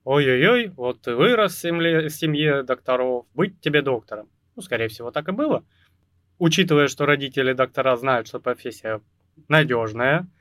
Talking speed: 150 wpm